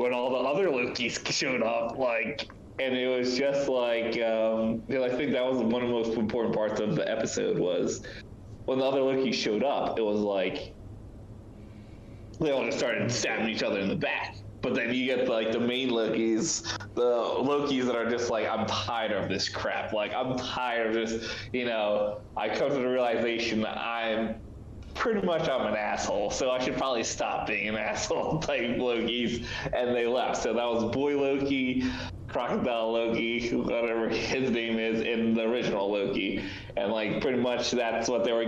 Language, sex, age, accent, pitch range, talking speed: English, male, 20-39, American, 110-125 Hz, 185 wpm